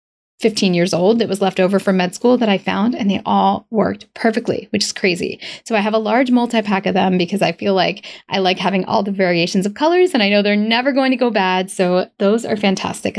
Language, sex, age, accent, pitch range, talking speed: English, female, 10-29, American, 190-230 Hz, 245 wpm